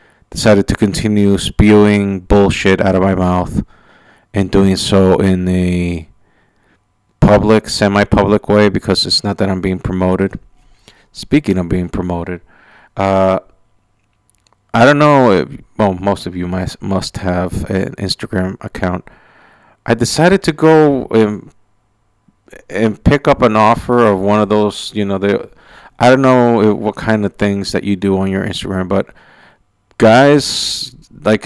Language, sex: English, male